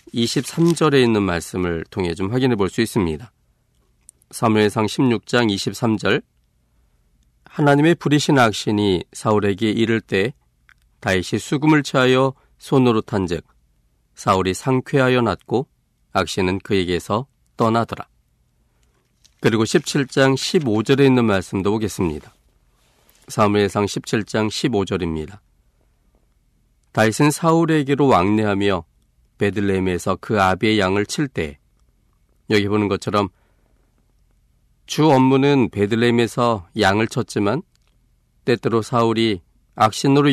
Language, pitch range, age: Korean, 95-130 Hz, 40-59